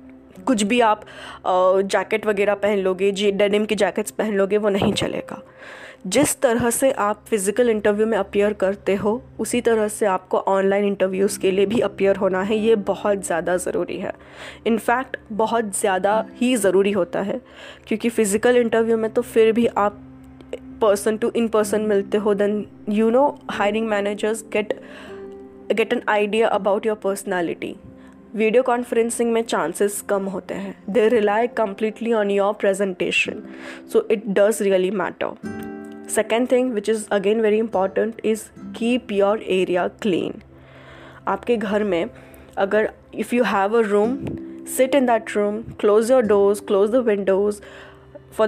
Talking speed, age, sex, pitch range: 130 wpm, 20-39, female, 195-225 Hz